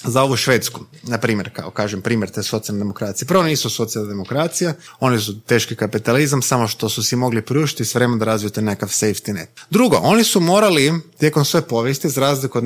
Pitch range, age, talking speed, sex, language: 115-150 Hz, 30-49, 200 wpm, male, Croatian